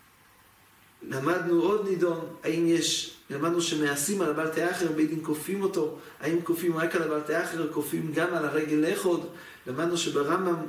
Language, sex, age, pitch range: English, male, 40-59, 155-180 Hz